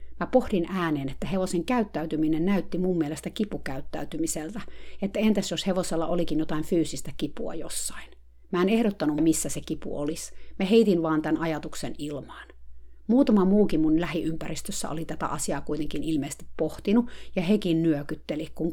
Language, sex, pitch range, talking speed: Finnish, female, 150-185 Hz, 145 wpm